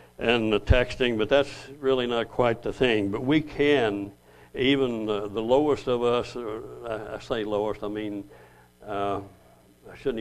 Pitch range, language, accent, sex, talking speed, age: 105-130 Hz, English, American, male, 165 wpm, 60-79